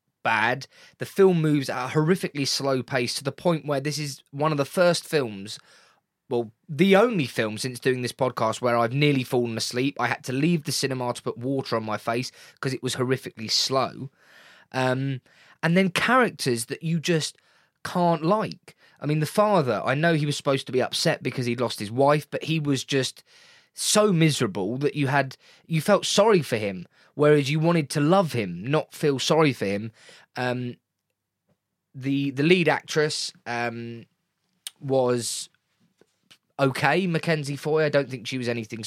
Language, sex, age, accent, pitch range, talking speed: English, male, 20-39, British, 120-155 Hz, 180 wpm